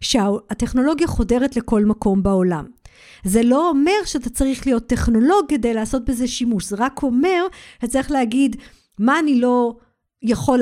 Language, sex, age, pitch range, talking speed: Hebrew, female, 50-69, 225-285 Hz, 145 wpm